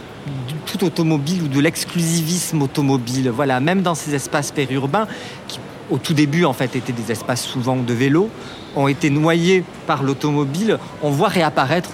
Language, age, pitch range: French, 40-59, 150-200 Hz